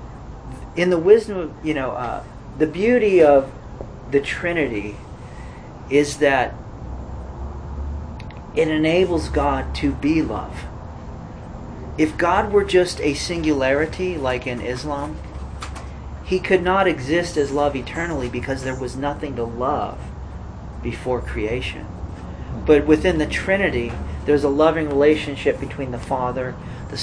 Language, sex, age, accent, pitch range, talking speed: English, male, 40-59, American, 110-155 Hz, 125 wpm